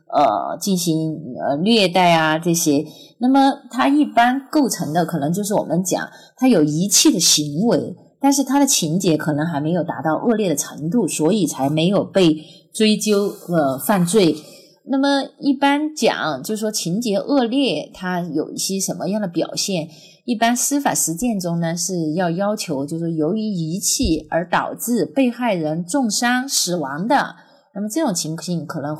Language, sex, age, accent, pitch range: Chinese, female, 30-49, native, 165-230 Hz